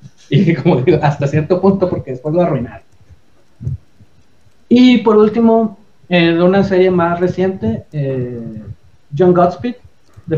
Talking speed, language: 125 wpm, Spanish